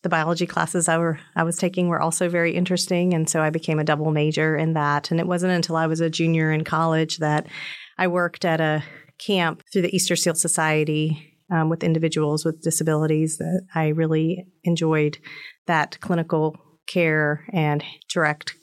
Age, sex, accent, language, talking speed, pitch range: 40-59, female, American, English, 185 wpm, 155-175 Hz